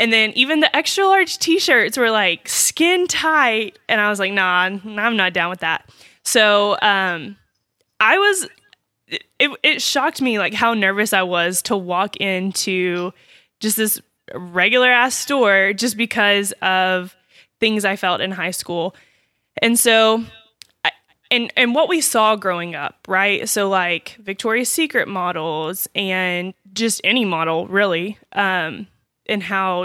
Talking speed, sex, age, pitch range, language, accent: 150 wpm, female, 20-39, 180-230 Hz, English, American